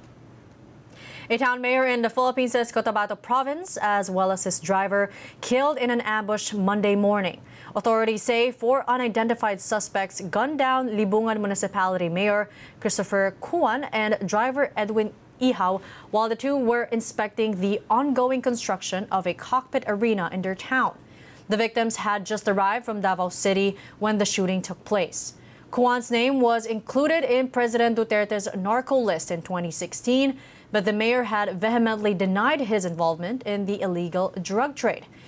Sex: female